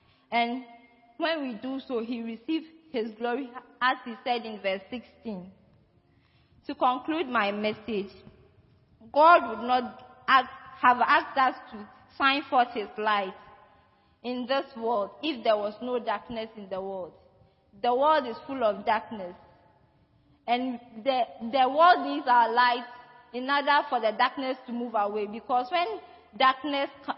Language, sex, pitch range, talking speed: English, female, 220-270 Hz, 145 wpm